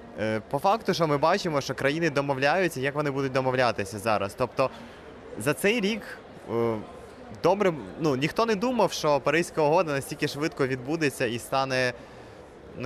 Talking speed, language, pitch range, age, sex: 145 wpm, Ukrainian, 130-155 Hz, 20-39, male